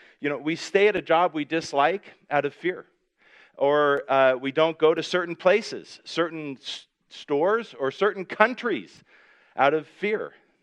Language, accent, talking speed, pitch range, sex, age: English, American, 165 wpm, 125-170 Hz, male, 40-59